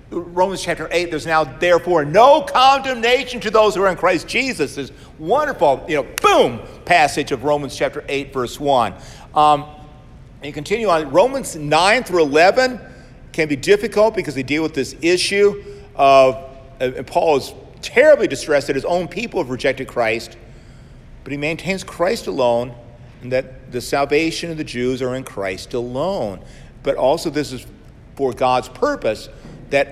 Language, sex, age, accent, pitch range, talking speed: English, male, 50-69, American, 125-170 Hz, 165 wpm